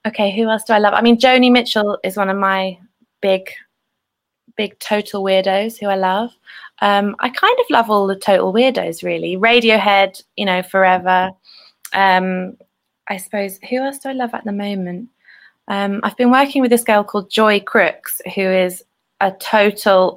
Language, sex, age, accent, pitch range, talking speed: English, female, 20-39, British, 185-220 Hz, 180 wpm